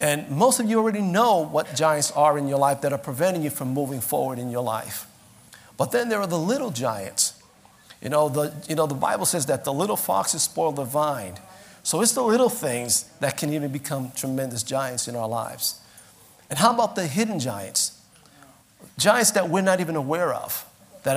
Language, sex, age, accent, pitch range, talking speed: English, male, 50-69, American, 130-175 Hz, 205 wpm